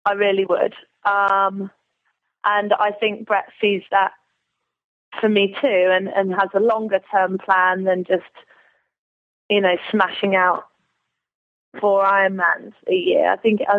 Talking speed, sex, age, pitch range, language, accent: 145 wpm, female, 20-39, 185-210 Hz, English, British